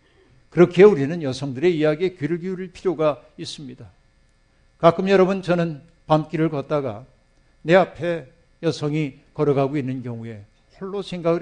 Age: 60-79